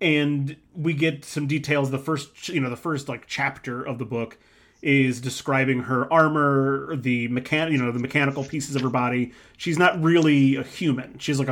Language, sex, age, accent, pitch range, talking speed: English, male, 30-49, American, 125-150 Hz, 195 wpm